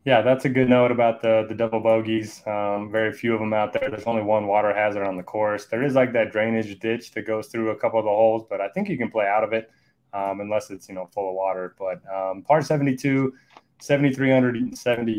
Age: 20-39